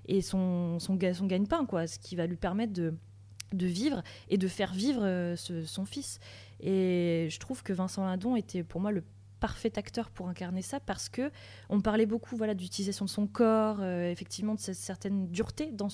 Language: French